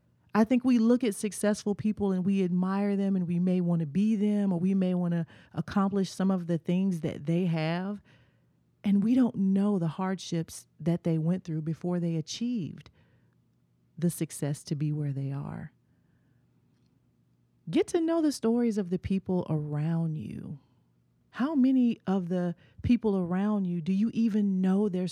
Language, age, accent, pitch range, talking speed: English, 40-59, American, 160-205 Hz, 175 wpm